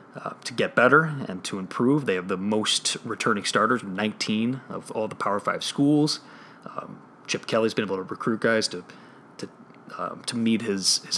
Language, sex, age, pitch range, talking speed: English, male, 30-49, 105-130 Hz, 190 wpm